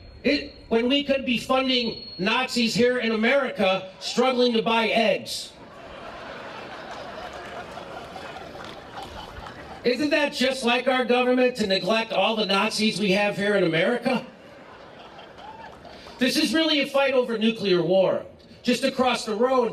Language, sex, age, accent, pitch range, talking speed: English, male, 50-69, American, 180-235 Hz, 125 wpm